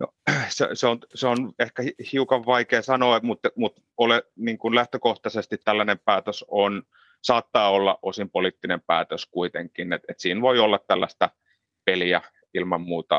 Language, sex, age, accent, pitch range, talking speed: Finnish, male, 30-49, native, 95-120 Hz, 150 wpm